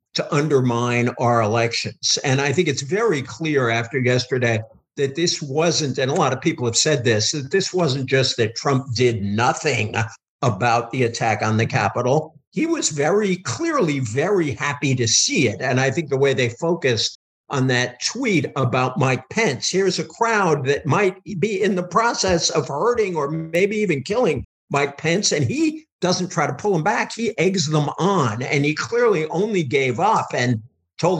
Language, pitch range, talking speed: English, 125-170 Hz, 185 wpm